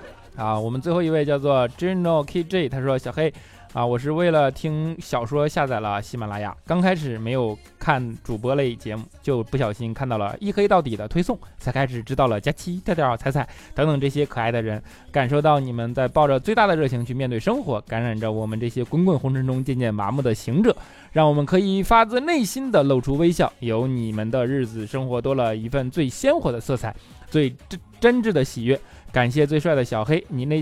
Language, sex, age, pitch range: Chinese, male, 20-39, 120-200 Hz